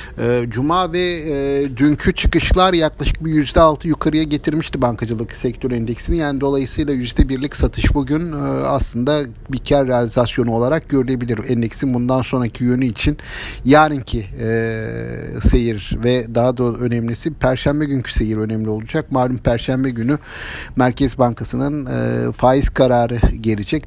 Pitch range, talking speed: 120-150 Hz, 125 wpm